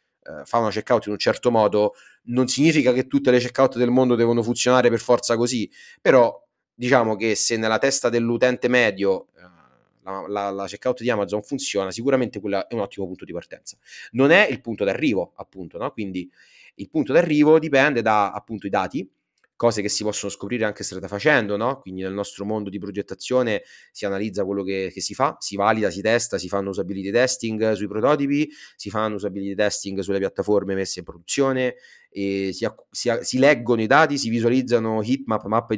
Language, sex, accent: Italian, male, native